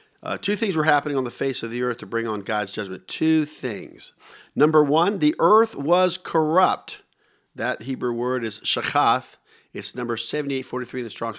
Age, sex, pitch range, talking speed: 50-69, male, 120-155 Hz, 185 wpm